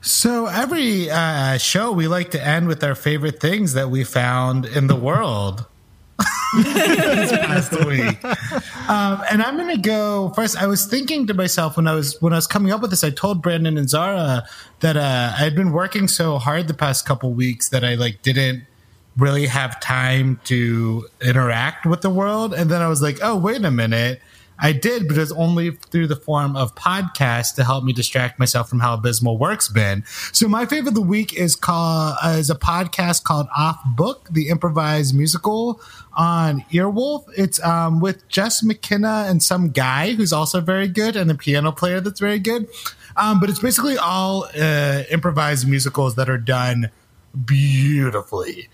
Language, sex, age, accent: English, male, 30-49, American